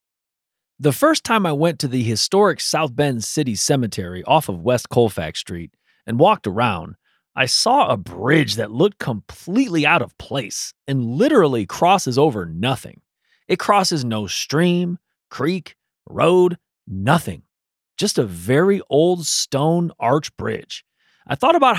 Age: 30-49